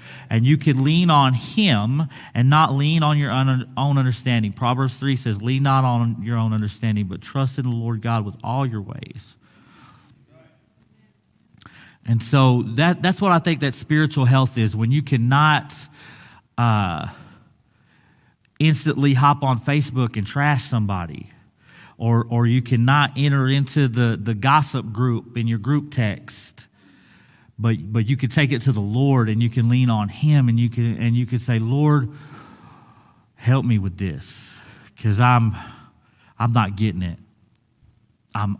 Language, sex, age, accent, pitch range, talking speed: English, male, 40-59, American, 110-135 Hz, 160 wpm